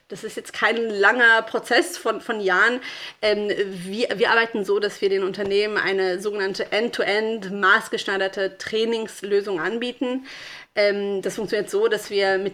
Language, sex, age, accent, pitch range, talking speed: German, female, 30-49, German, 200-245 Hz, 150 wpm